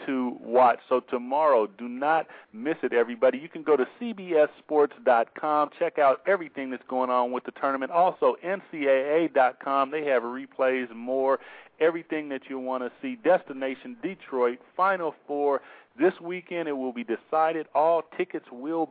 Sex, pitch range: male, 140-175 Hz